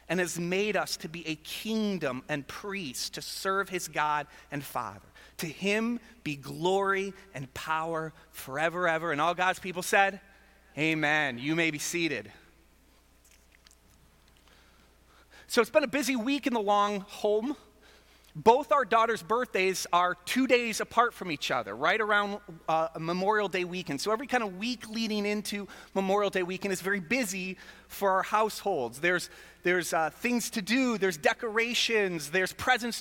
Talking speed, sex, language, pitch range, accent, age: 160 wpm, male, English, 170-220 Hz, American, 30-49